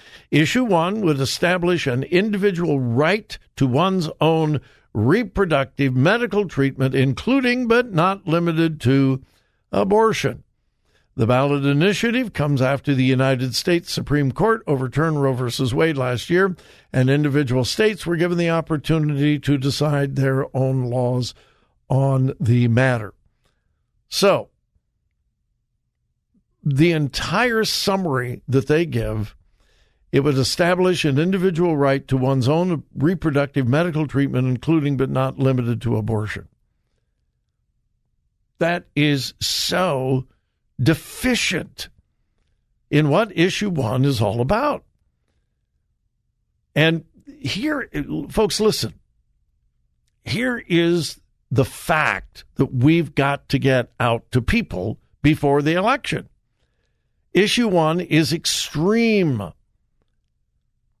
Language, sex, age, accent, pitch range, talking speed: English, male, 60-79, American, 130-170 Hz, 105 wpm